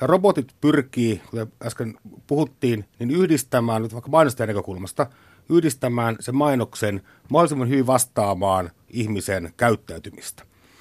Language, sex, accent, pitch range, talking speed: Finnish, male, native, 105-145 Hz, 100 wpm